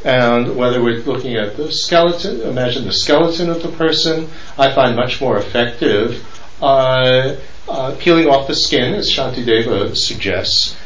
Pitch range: 115-145 Hz